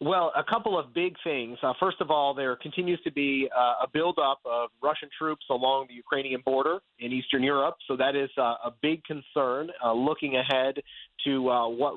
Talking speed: 200 wpm